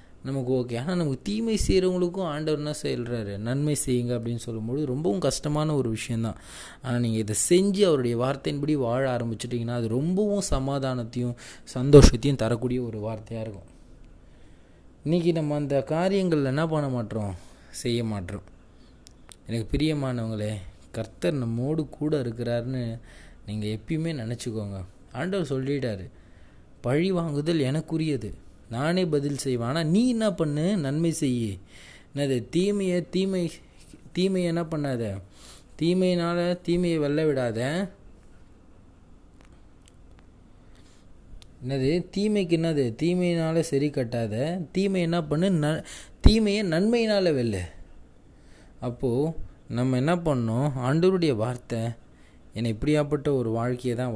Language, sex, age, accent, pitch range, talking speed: Tamil, male, 20-39, native, 110-160 Hz, 105 wpm